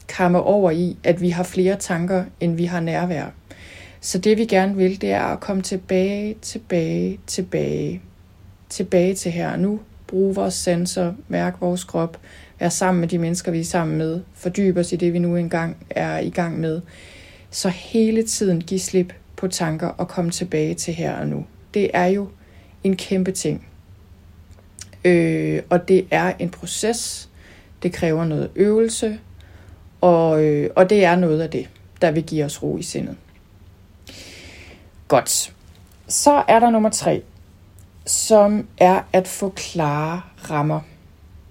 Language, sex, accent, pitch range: Danish, female, native, 130-190 Hz